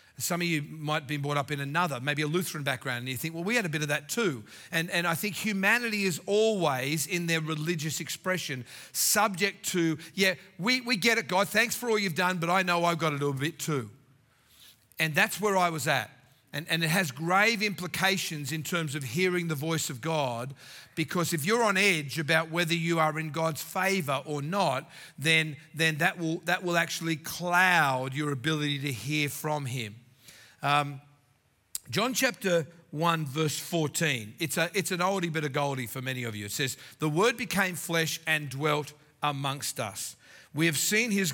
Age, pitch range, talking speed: 40-59, 145-180 Hz, 200 wpm